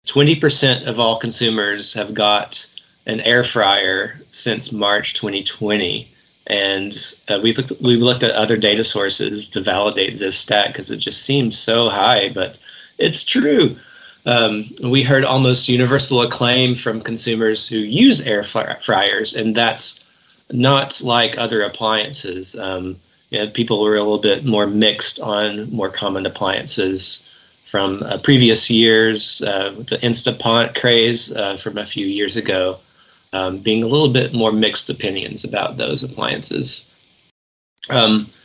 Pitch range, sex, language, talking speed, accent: 105-120 Hz, male, English, 135 wpm, American